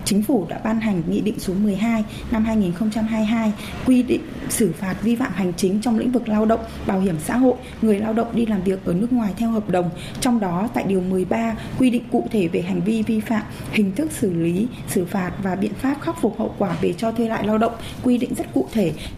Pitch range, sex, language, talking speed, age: 200-235 Hz, female, Vietnamese, 245 wpm, 20-39